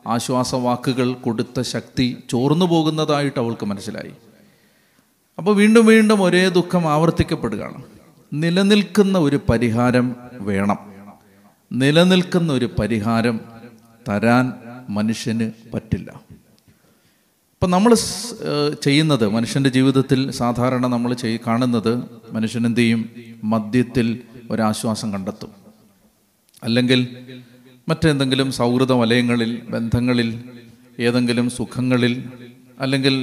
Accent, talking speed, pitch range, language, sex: native, 80 wpm, 115-150 Hz, Malayalam, male